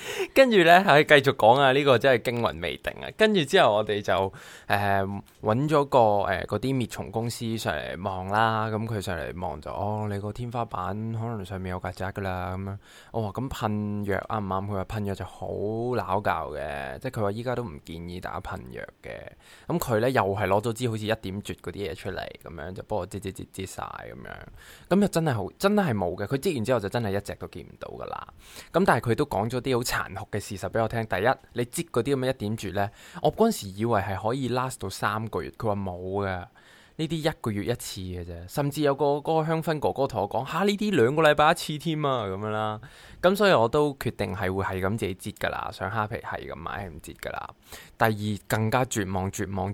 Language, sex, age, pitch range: Chinese, male, 20-39, 100-130 Hz